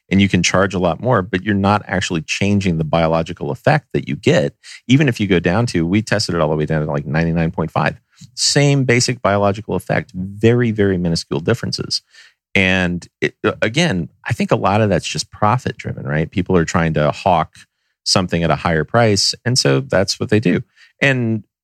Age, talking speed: 40-59, 195 wpm